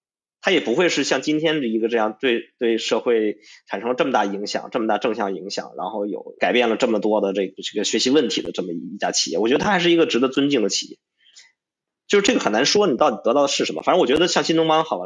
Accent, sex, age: native, male, 20-39